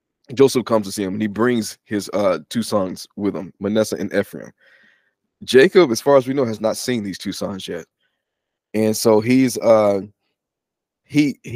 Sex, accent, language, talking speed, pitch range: male, American, English, 175 wpm, 100-120 Hz